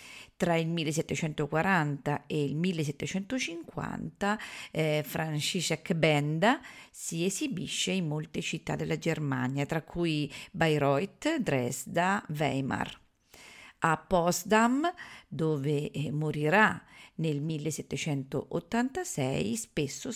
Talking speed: 85 wpm